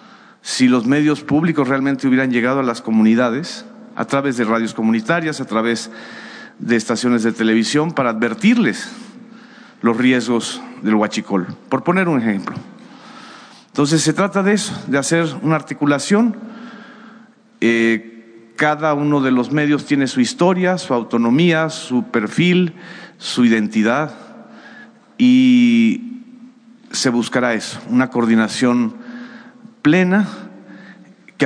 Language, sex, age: Spanish, male, 40-59